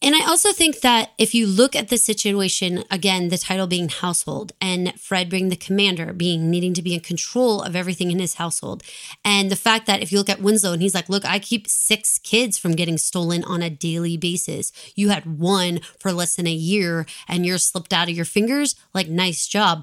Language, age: English, 20-39